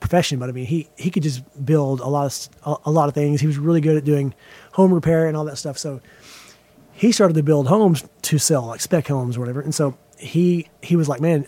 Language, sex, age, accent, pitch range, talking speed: English, male, 30-49, American, 145-170 Hz, 255 wpm